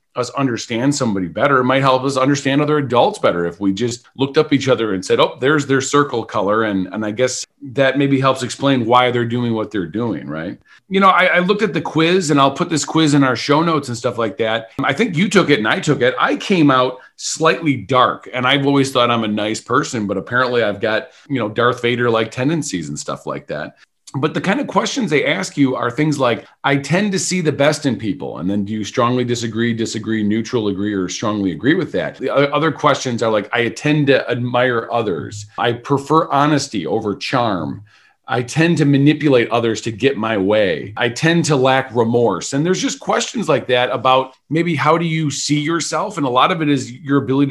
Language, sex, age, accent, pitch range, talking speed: English, male, 40-59, American, 115-150 Hz, 230 wpm